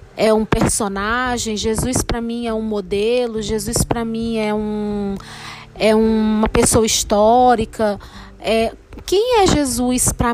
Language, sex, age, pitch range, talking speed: Portuguese, female, 20-39, 230-295 Hz, 120 wpm